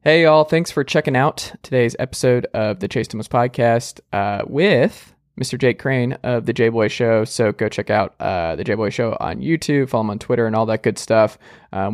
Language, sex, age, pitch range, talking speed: English, male, 20-39, 110-135 Hz, 210 wpm